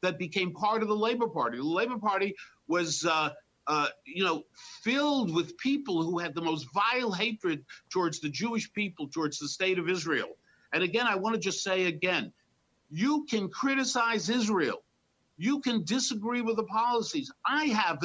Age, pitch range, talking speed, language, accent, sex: 50-69, 175-235 Hz, 175 wpm, English, American, male